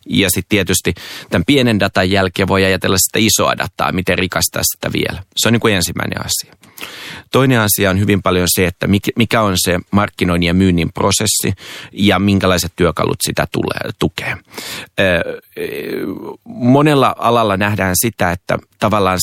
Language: Finnish